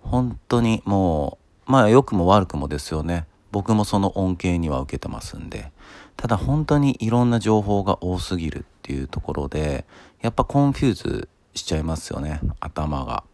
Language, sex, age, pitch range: Japanese, male, 40-59, 80-115 Hz